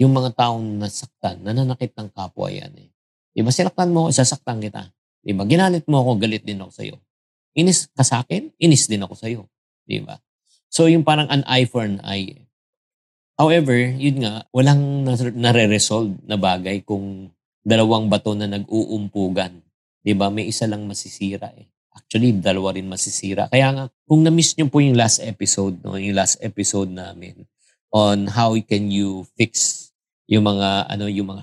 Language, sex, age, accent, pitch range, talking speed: Filipino, male, 50-69, native, 100-125 Hz, 165 wpm